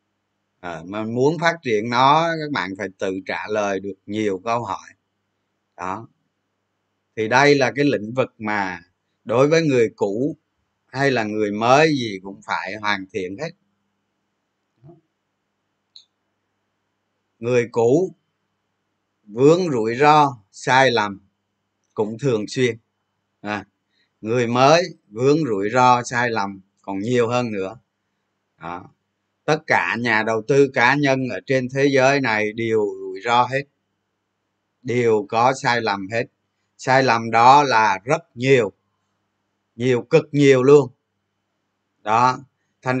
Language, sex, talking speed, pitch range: Vietnamese, male, 135 wpm, 100-135 Hz